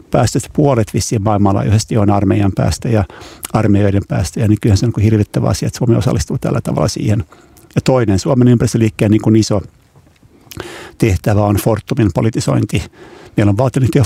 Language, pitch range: Finnish, 95-115 Hz